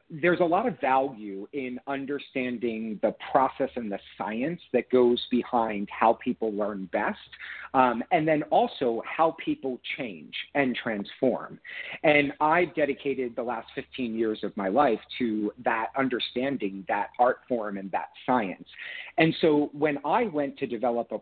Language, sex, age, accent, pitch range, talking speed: English, male, 40-59, American, 110-145 Hz, 155 wpm